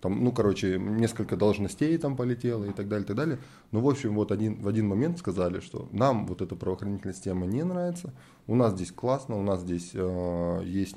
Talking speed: 215 wpm